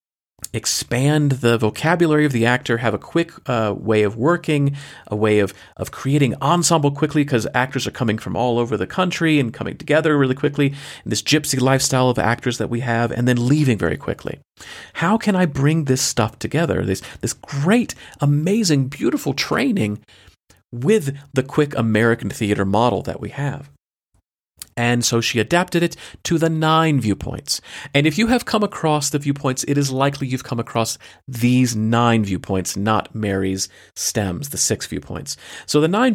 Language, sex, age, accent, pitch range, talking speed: English, male, 40-59, American, 110-150 Hz, 175 wpm